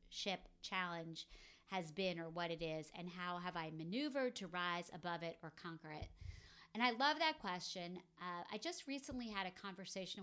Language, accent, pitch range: English, American, 165-200 Hz